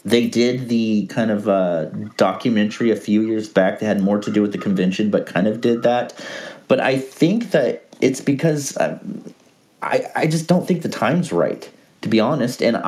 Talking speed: 195 wpm